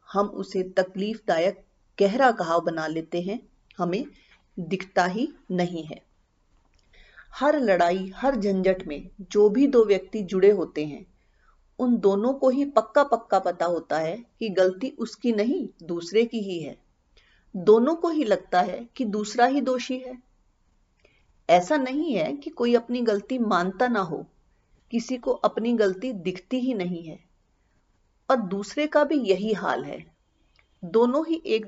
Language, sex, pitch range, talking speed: Hindi, female, 185-245 Hz, 155 wpm